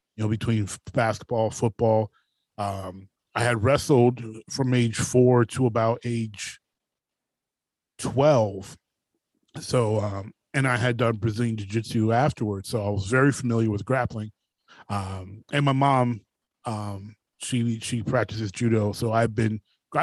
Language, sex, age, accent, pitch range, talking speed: English, male, 30-49, American, 105-125 Hz, 140 wpm